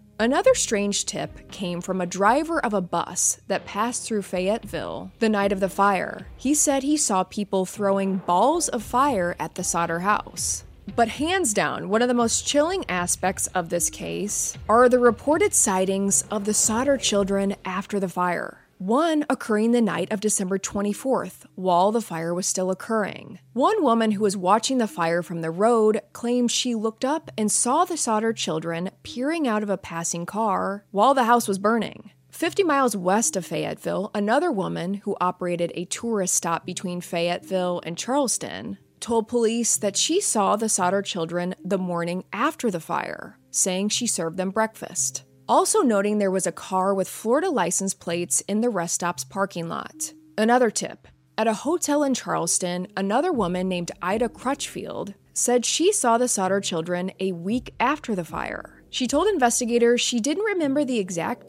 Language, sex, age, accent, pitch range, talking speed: English, female, 20-39, American, 185-240 Hz, 175 wpm